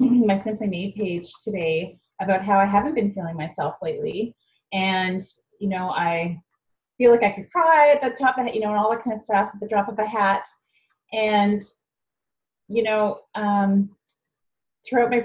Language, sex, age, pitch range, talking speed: English, female, 30-49, 160-200 Hz, 185 wpm